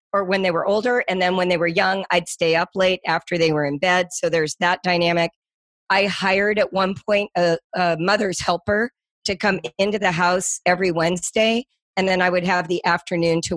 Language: English